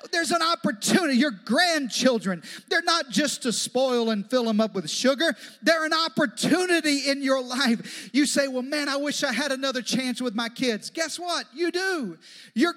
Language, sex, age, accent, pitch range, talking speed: English, male, 40-59, American, 230-315 Hz, 190 wpm